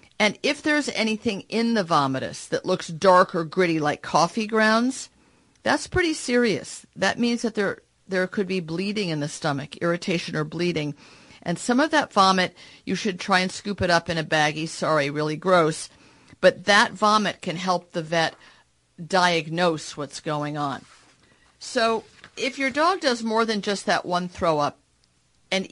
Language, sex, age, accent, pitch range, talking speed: English, female, 50-69, American, 155-210 Hz, 170 wpm